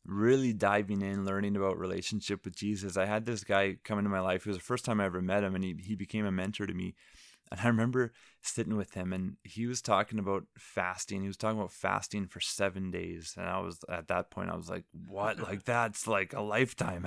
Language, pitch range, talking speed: English, 95-115 Hz, 240 wpm